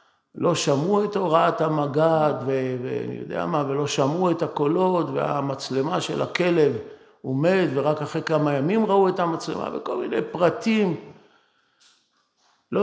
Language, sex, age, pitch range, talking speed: Hebrew, male, 50-69, 140-180 Hz, 140 wpm